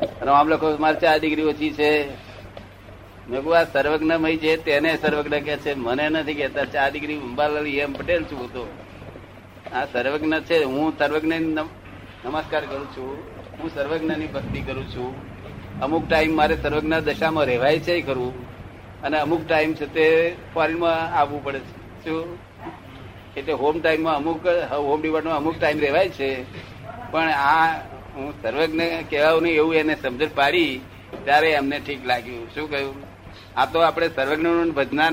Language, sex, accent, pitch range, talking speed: Gujarati, male, native, 125-160 Hz, 80 wpm